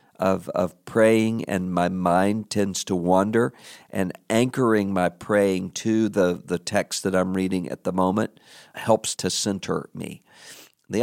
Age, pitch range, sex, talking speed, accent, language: 50-69, 95-115 Hz, male, 150 wpm, American, English